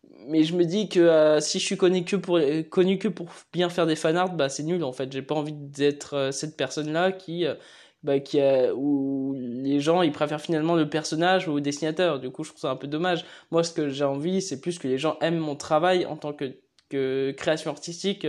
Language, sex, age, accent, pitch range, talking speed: French, male, 20-39, French, 140-170 Hz, 250 wpm